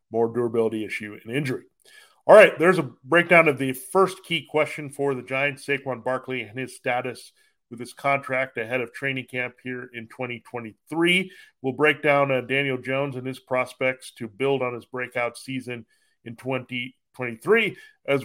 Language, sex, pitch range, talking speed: English, male, 125-160 Hz, 170 wpm